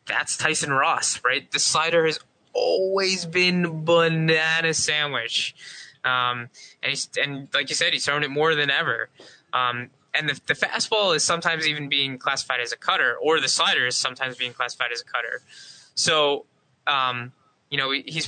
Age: 20-39